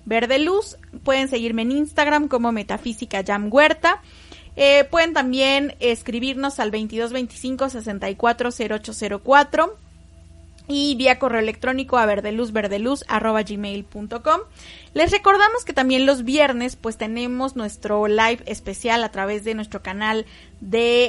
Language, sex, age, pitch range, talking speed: Spanish, female, 30-49, 215-265 Hz, 110 wpm